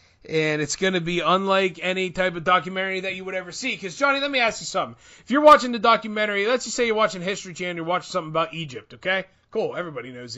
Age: 30-49